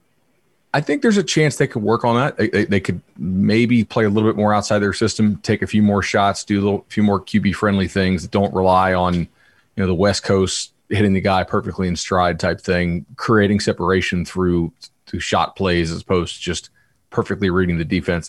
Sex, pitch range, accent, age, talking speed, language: male, 90-115 Hz, American, 30-49, 215 wpm, English